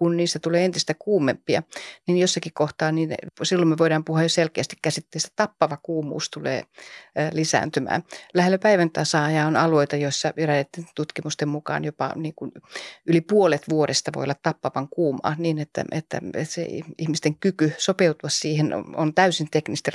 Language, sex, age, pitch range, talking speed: Finnish, female, 30-49, 150-170 Hz, 150 wpm